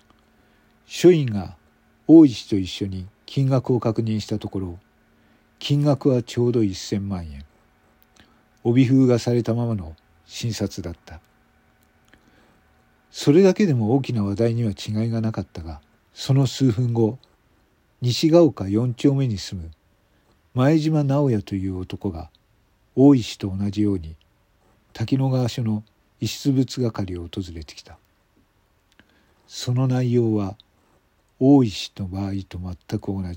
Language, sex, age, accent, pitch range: Japanese, male, 50-69, native, 95-125 Hz